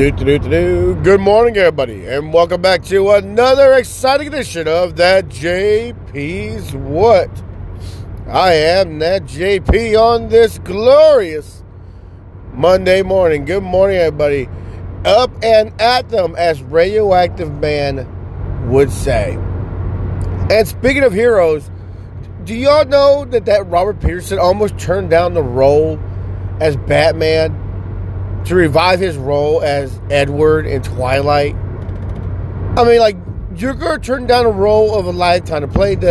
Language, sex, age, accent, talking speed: English, male, 40-59, American, 125 wpm